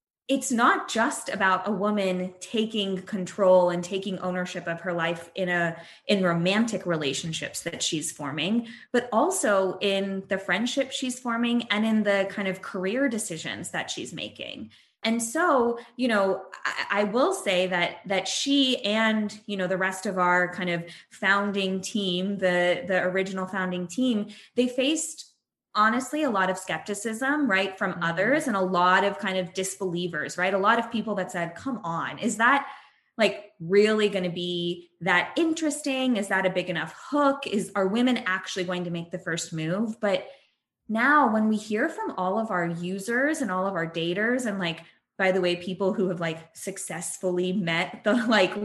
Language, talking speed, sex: English, 180 wpm, female